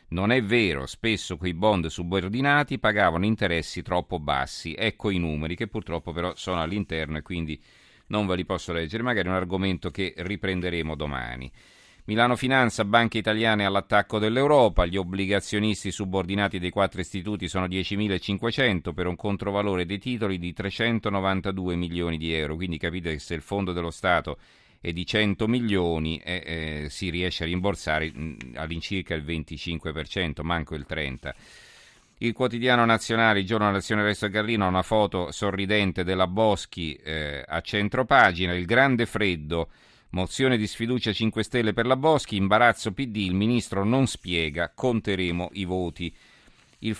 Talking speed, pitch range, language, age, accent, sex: 150 wpm, 85-110 Hz, Italian, 40-59, native, male